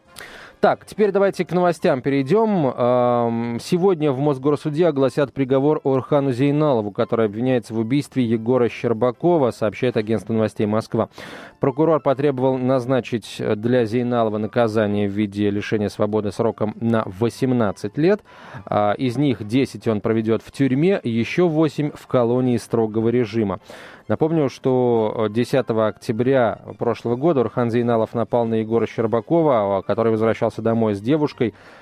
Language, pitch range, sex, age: Russian, 110-140 Hz, male, 20-39